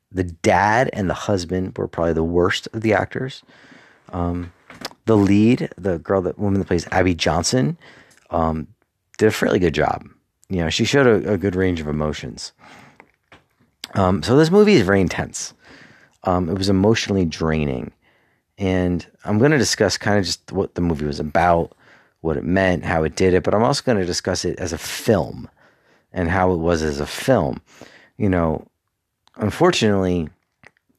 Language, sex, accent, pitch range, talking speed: English, male, American, 80-100 Hz, 175 wpm